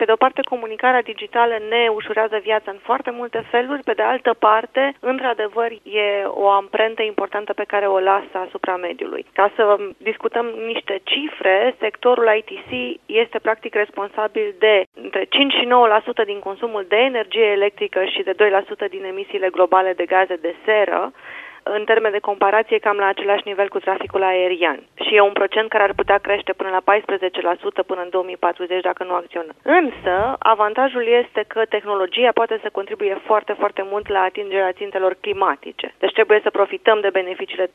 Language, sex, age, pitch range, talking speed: Romanian, female, 20-39, 195-230 Hz, 170 wpm